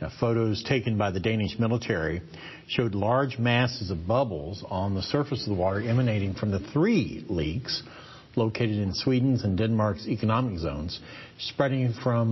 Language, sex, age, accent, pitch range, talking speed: English, male, 50-69, American, 105-135 Hz, 155 wpm